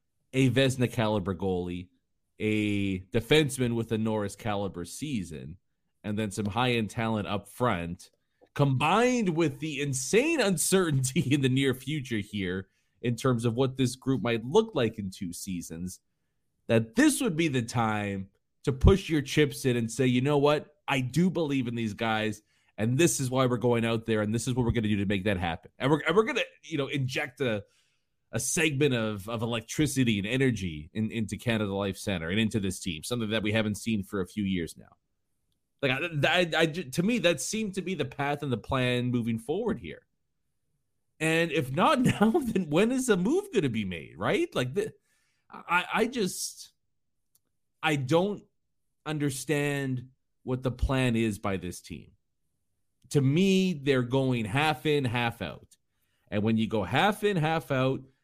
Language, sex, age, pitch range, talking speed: English, male, 30-49, 110-150 Hz, 185 wpm